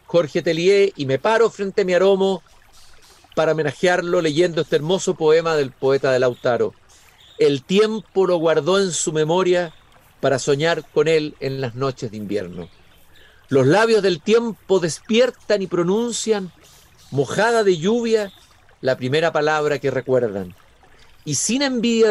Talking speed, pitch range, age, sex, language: 145 wpm, 130-190 Hz, 50-69, male, Spanish